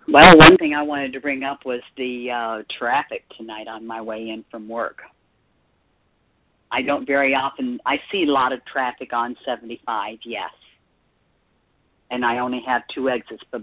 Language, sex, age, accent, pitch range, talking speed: English, female, 50-69, American, 115-135 Hz, 170 wpm